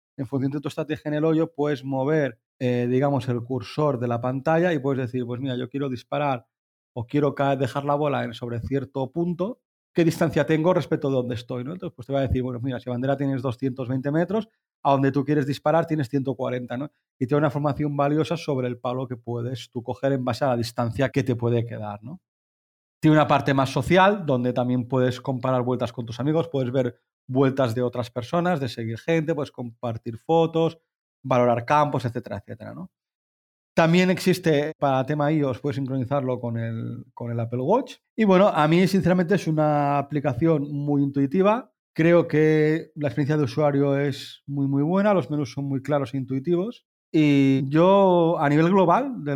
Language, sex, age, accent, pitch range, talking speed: Spanish, male, 30-49, Spanish, 125-155 Hz, 195 wpm